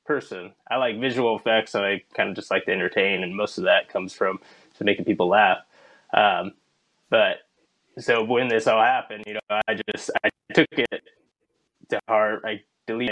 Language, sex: English, male